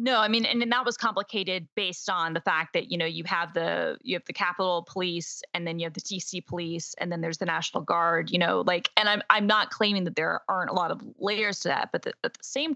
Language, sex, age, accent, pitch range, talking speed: English, female, 20-39, American, 175-220 Hz, 275 wpm